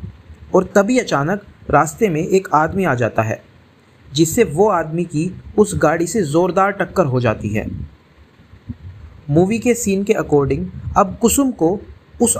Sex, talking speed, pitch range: male, 150 wpm, 115-195 Hz